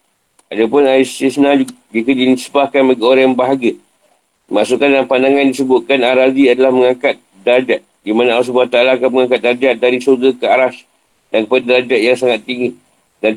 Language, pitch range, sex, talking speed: Malay, 120-135 Hz, male, 155 wpm